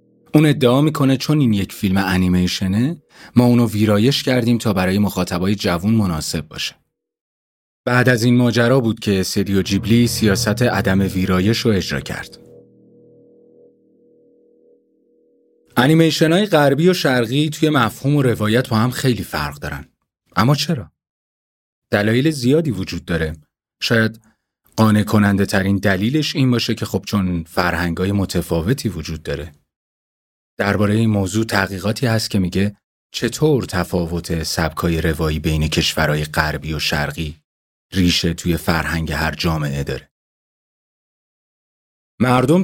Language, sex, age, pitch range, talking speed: Persian, male, 30-49, 90-120 Hz, 125 wpm